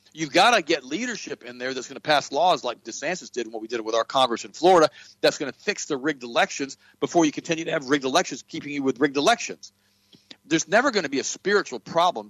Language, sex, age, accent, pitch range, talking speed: English, male, 50-69, American, 125-175 Hz, 250 wpm